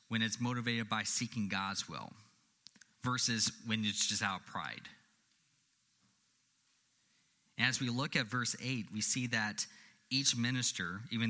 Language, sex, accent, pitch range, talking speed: English, male, American, 105-130 Hz, 140 wpm